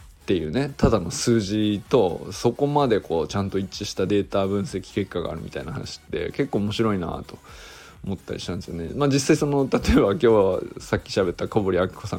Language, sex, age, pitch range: Japanese, male, 20-39, 95-135 Hz